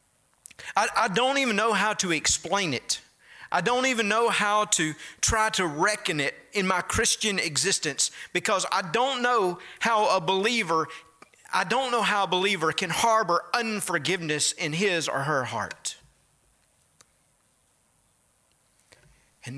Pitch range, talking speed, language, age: 115-175 Hz, 140 wpm, English, 40-59